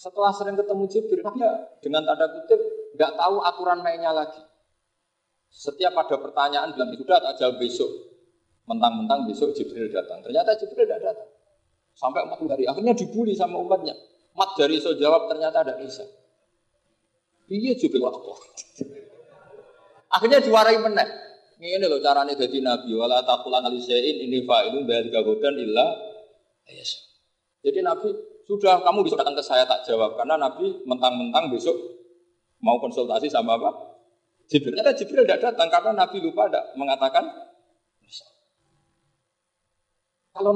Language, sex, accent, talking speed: Indonesian, male, native, 135 wpm